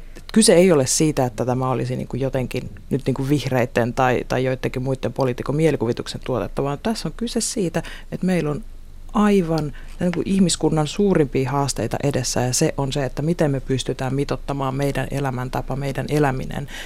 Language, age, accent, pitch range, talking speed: Finnish, 30-49, native, 130-160 Hz, 170 wpm